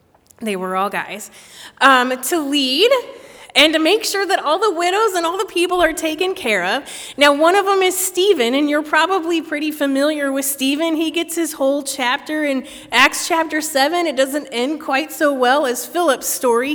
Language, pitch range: English, 220-305 Hz